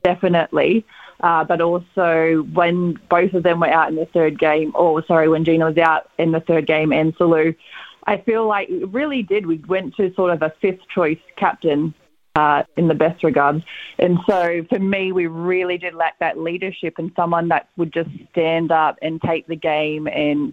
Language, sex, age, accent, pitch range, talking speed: English, female, 20-39, Australian, 155-180 Hz, 200 wpm